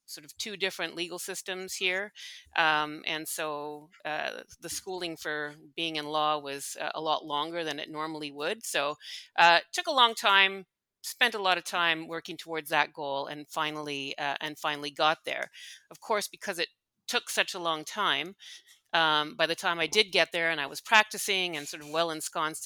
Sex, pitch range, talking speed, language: female, 150-175 Hz, 195 wpm, English